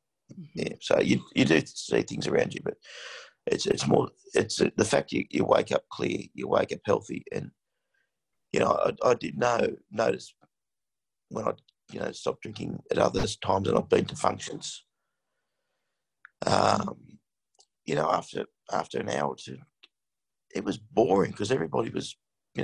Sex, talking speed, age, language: male, 165 wpm, 50-69, English